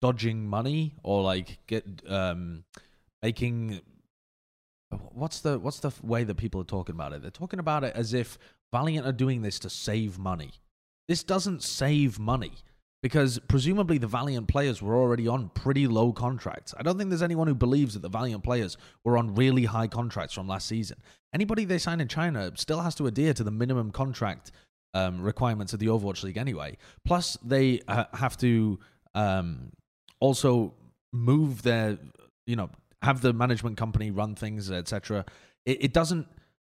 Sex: male